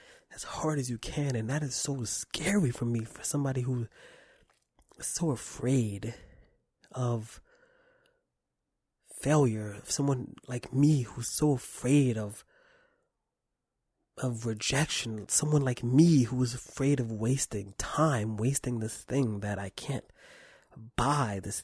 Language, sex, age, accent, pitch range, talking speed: English, male, 20-39, American, 115-145 Hz, 135 wpm